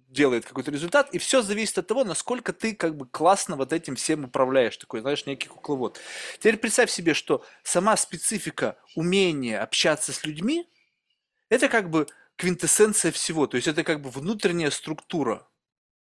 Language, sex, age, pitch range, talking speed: Russian, male, 20-39, 135-185 Hz, 160 wpm